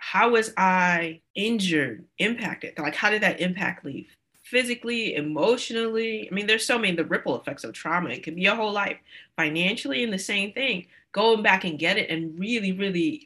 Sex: female